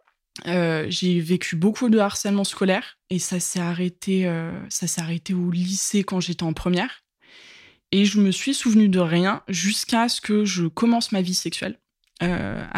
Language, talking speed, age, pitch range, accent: French, 175 wpm, 20-39, 175-215 Hz, French